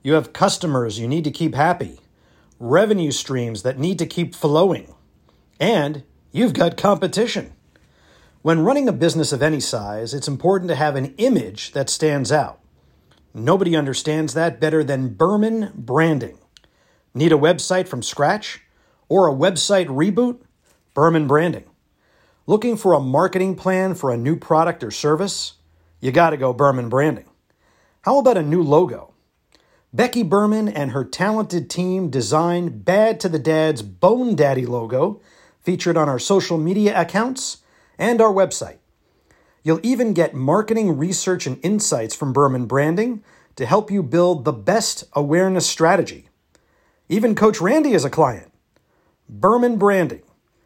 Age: 50-69